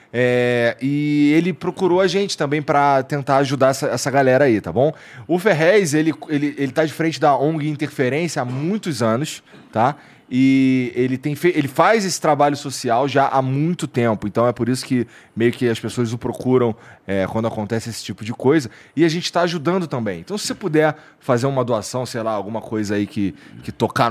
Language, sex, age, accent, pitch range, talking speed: Portuguese, male, 20-39, Brazilian, 115-155 Hz, 205 wpm